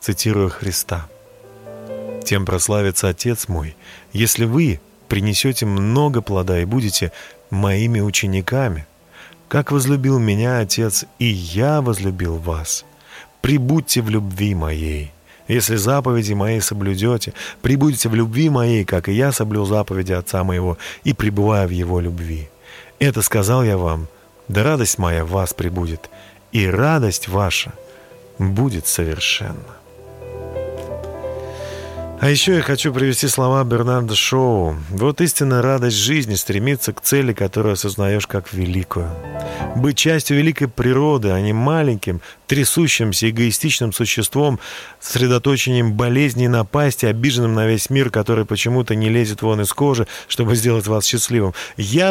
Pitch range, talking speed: 100-140 Hz, 125 wpm